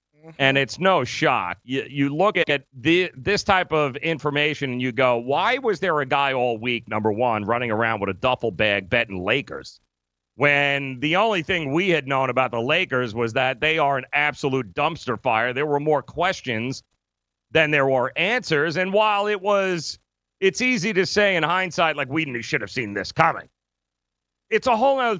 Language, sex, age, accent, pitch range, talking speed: English, male, 40-59, American, 130-180 Hz, 190 wpm